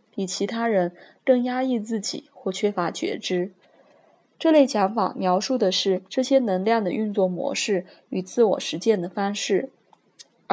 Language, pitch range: Chinese, 195-245 Hz